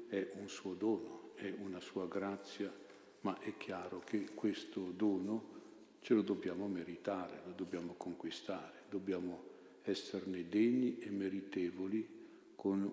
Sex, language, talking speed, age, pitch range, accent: male, Italian, 125 wpm, 50-69, 95-105 Hz, native